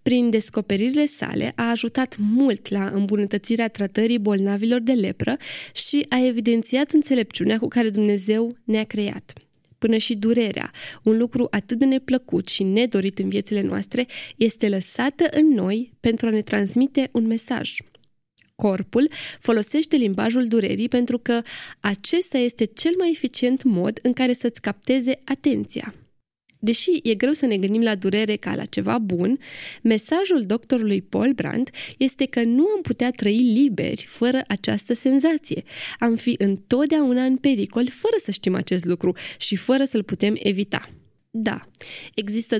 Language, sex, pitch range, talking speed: Romanian, female, 205-255 Hz, 145 wpm